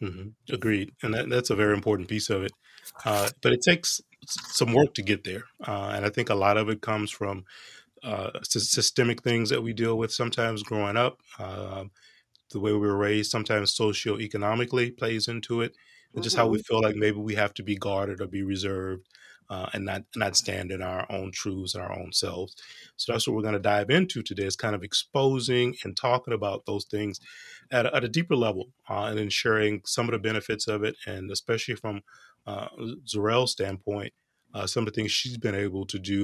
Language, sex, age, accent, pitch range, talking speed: English, male, 30-49, American, 100-120 Hz, 215 wpm